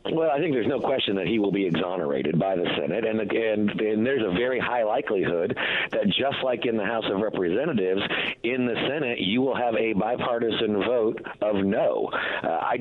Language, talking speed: English, 200 wpm